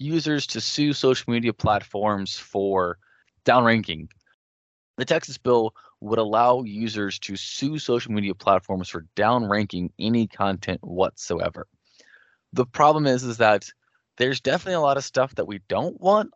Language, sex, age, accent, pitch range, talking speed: English, male, 20-39, American, 100-140 Hz, 145 wpm